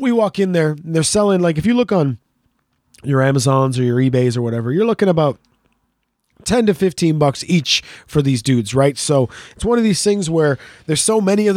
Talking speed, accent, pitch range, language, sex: 220 wpm, American, 135-180 Hz, English, male